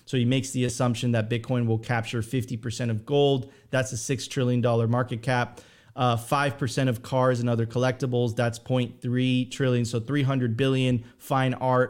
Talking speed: 175 wpm